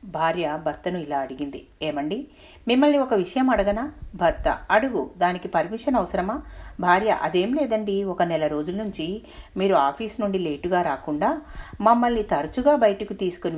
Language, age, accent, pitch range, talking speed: Telugu, 50-69, native, 150-215 Hz, 135 wpm